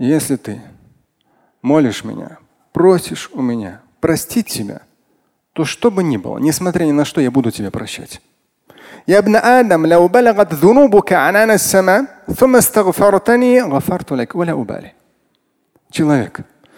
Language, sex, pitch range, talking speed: Russian, male, 140-195 Hz, 80 wpm